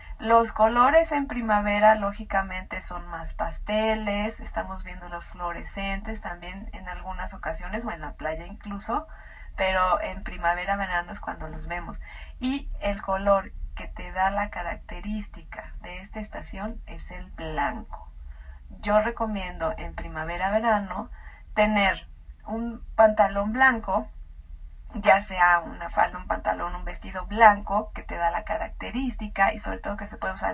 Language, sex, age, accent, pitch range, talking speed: Spanish, female, 30-49, Mexican, 190-220 Hz, 140 wpm